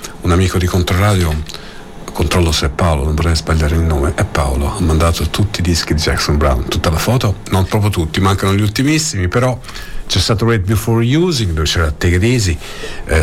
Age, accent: 50-69, native